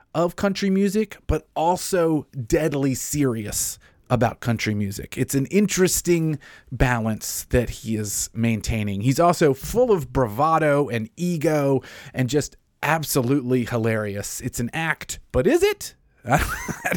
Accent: American